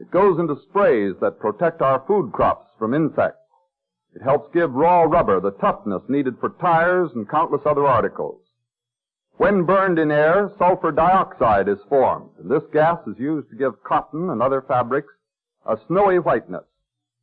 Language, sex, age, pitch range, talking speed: English, male, 50-69, 130-190 Hz, 165 wpm